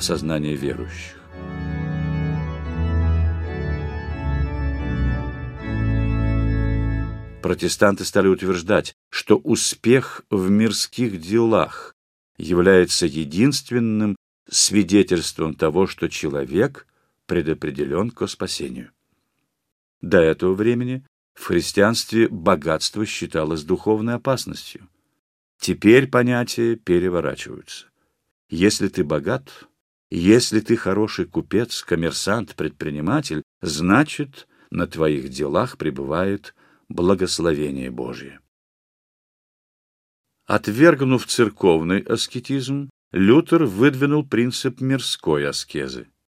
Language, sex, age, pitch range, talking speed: Russian, male, 50-69, 80-115 Hz, 70 wpm